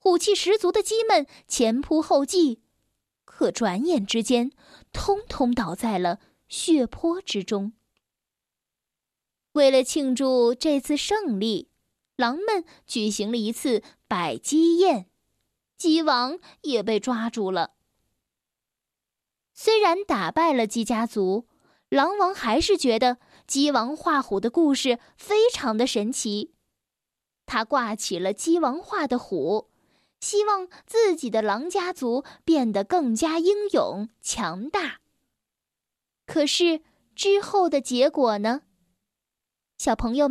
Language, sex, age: Chinese, female, 10-29